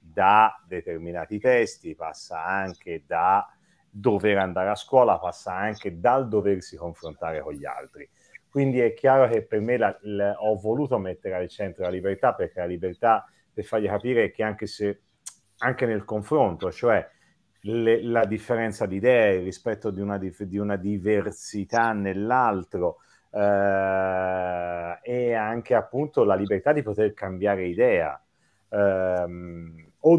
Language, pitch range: Italian, 95-120 Hz